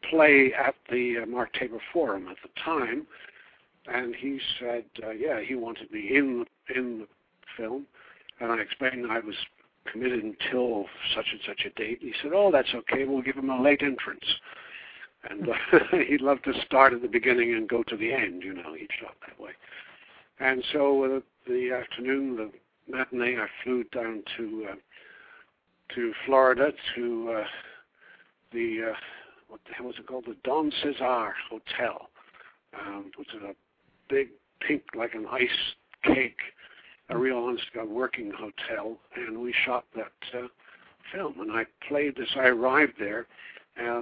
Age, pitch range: 60-79, 120-140 Hz